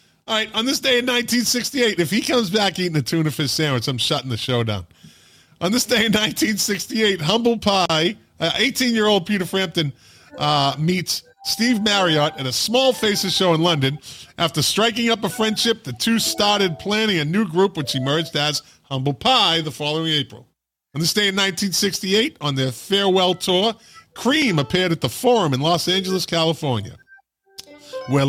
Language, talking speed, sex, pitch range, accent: English, 175 wpm, male, 130-205 Hz, American